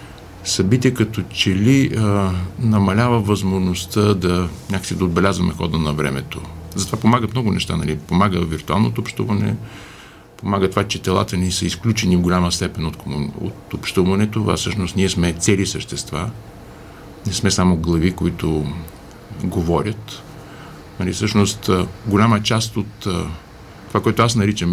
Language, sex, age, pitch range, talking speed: Bulgarian, male, 50-69, 85-110 Hz, 125 wpm